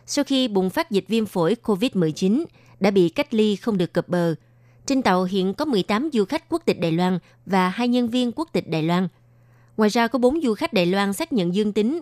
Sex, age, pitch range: female, 20-39, 175-230 Hz